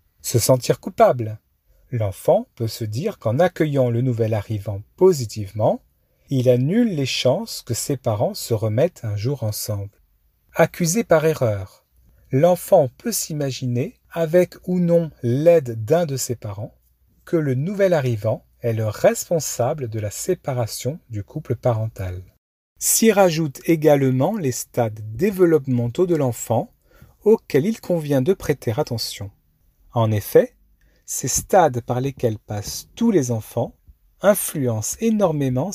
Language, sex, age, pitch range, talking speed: French, male, 40-59, 110-160 Hz, 130 wpm